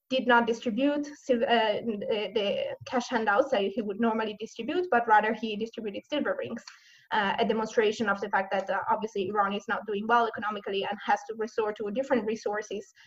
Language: English